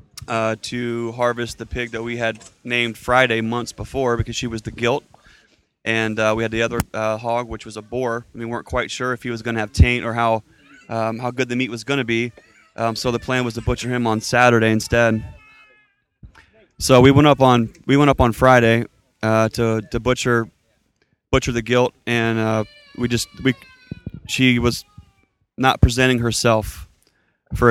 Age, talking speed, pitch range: 20-39, 195 wpm, 110-120 Hz